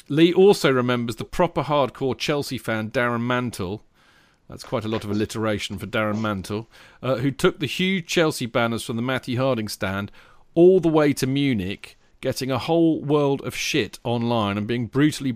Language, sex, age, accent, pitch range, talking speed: English, male, 40-59, British, 105-135 Hz, 180 wpm